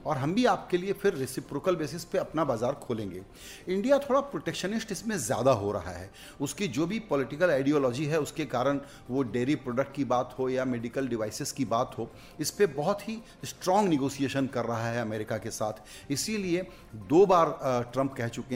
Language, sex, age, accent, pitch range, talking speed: Hindi, male, 40-59, native, 130-180 Hz, 190 wpm